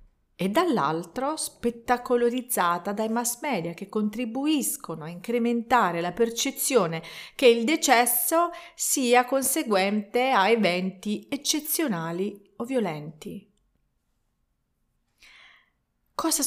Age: 40-59